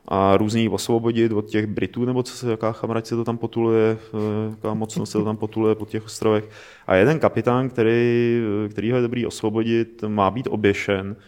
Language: Czech